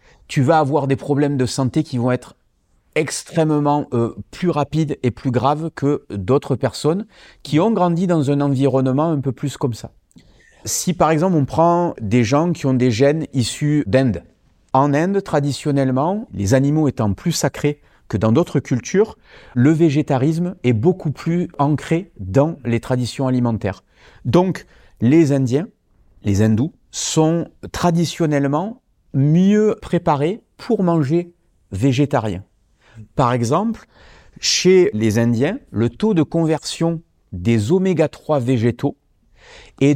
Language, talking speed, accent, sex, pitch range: French, 135 wpm, French, male, 120-160 Hz